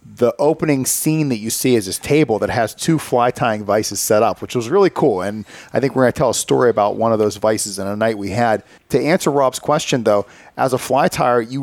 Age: 40-59